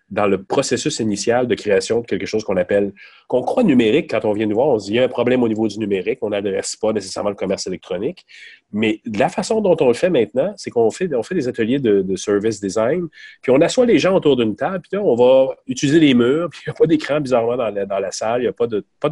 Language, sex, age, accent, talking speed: French, male, 30-49, Canadian, 275 wpm